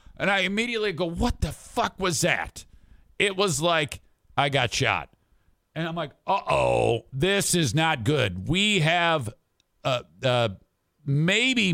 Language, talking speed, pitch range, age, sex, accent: English, 150 wpm, 115-170 Hz, 50-69, male, American